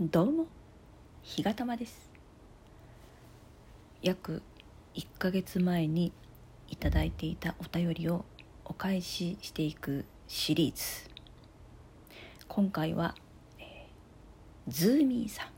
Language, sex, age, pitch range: Japanese, female, 40-59, 160-190 Hz